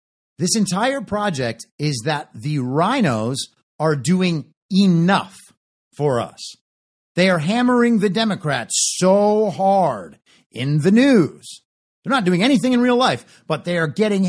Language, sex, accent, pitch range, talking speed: English, male, American, 150-220 Hz, 140 wpm